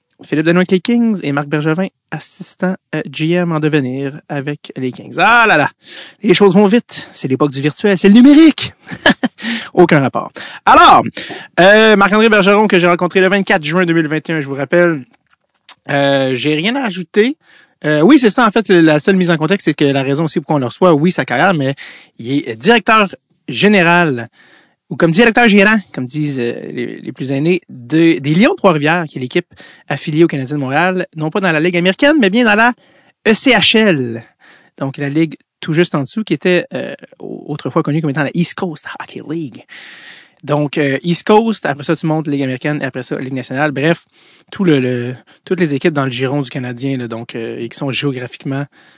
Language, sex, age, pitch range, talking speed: French, male, 30-49, 140-190 Hz, 200 wpm